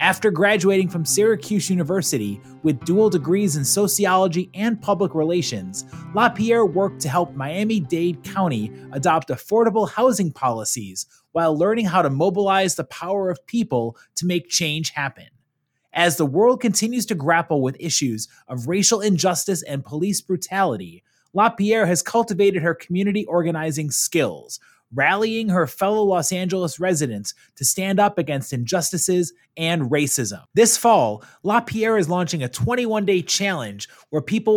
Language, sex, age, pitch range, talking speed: English, male, 30-49, 150-200 Hz, 140 wpm